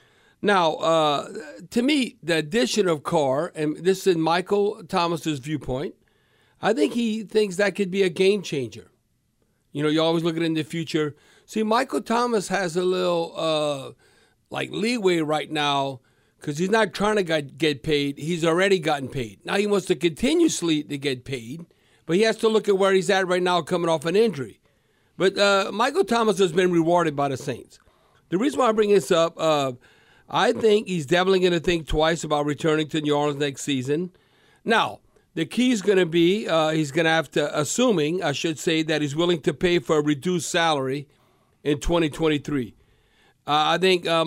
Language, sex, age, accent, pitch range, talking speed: English, male, 60-79, American, 150-190 Hz, 200 wpm